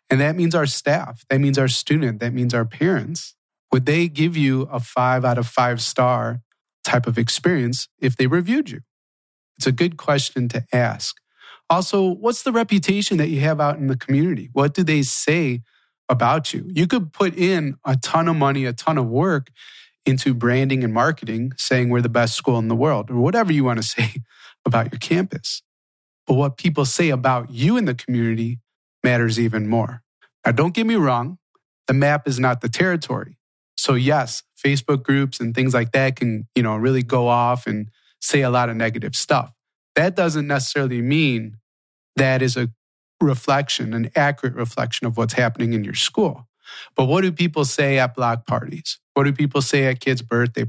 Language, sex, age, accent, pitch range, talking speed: English, male, 30-49, American, 120-150 Hz, 190 wpm